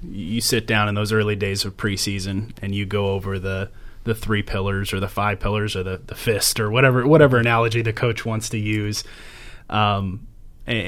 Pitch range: 105-120 Hz